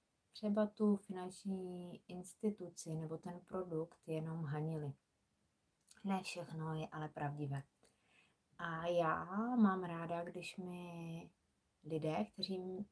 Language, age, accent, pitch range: Czech, 20-39, native, 165-195 Hz